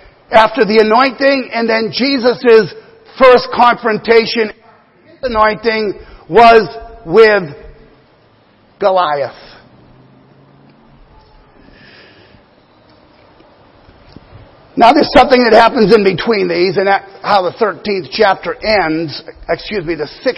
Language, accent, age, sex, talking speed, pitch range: English, American, 50-69, male, 95 wpm, 205-255 Hz